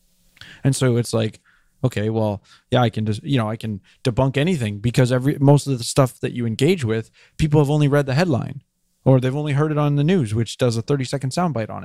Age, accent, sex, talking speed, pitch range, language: 20-39, American, male, 245 wpm, 110-140 Hz, English